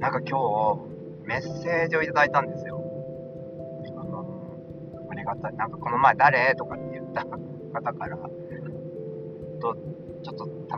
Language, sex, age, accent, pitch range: Japanese, male, 40-59, native, 125-170 Hz